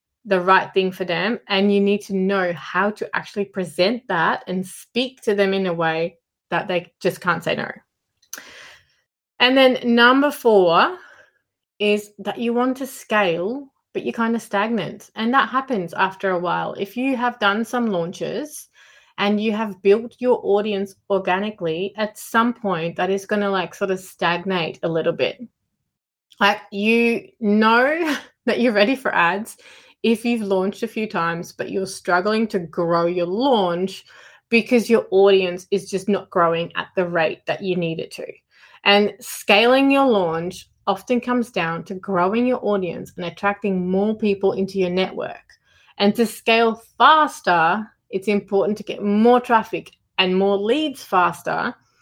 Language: English